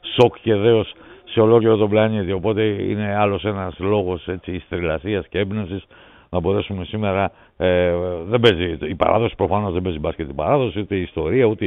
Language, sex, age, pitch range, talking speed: Greek, male, 60-79, 100-120 Hz, 180 wpm